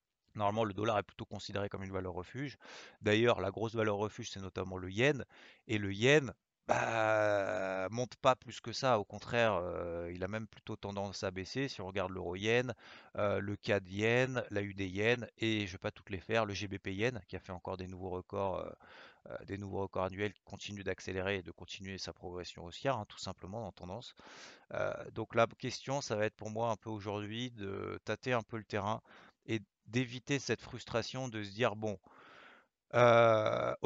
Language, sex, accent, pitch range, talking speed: French, male, French, 95-120 Hz, 190 wpm